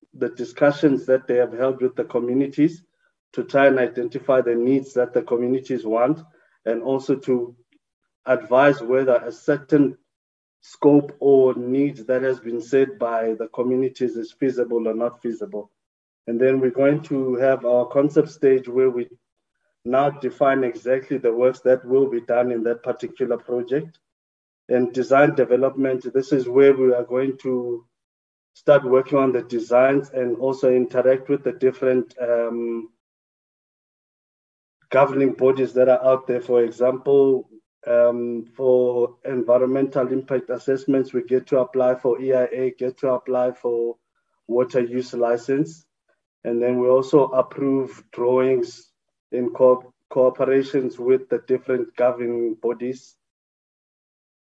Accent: South African